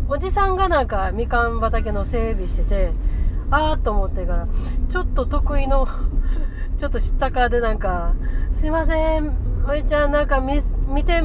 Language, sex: Japanese, female